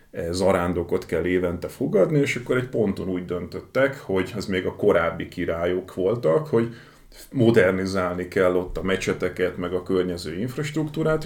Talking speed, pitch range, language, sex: 145 wpm, 90-105 Hz, Hungarian, male